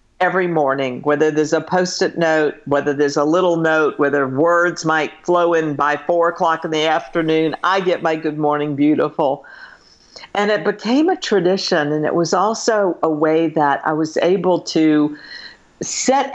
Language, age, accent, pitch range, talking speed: English, 50-69, American, 155-190 Hz, 170 wpm